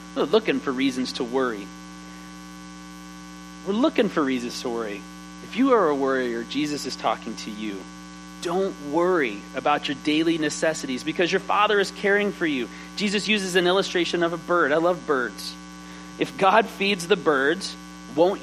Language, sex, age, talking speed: English, male, 30-49, 165 wpm